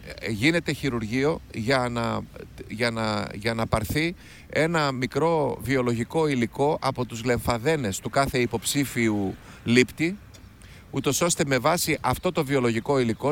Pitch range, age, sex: 120-165 Hz, 30-49, male